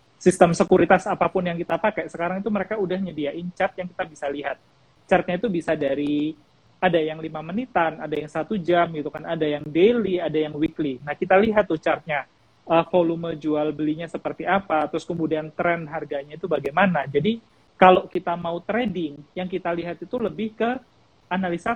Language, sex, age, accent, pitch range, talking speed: Indonesian, male, 30-49, native, 160-195 Hz, 180 wpm